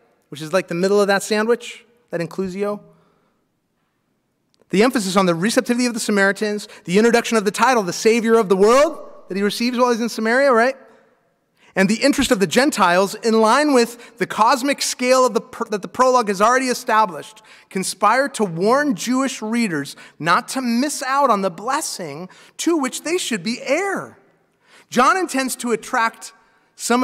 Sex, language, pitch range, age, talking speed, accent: male, English, 185-245 Hz, 30-49, 170 wpm, American